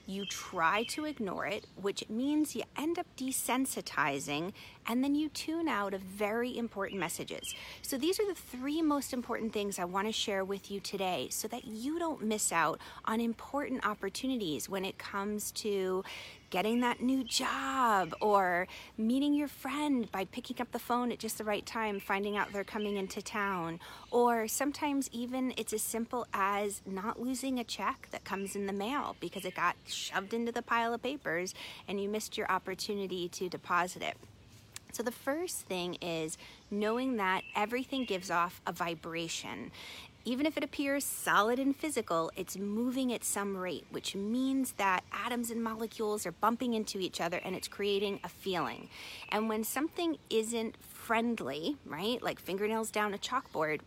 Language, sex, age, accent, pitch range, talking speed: English, female, 30-49, American, 190-245 Hz, 175 wpm